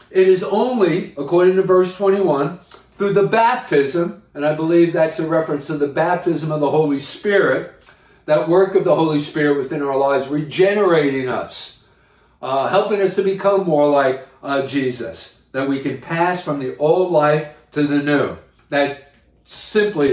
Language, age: English, 50-69